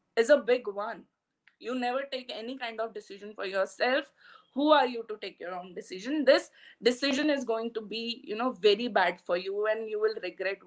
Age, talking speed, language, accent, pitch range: 20-39, 210 wpm, English, Indian, 215-260 Hz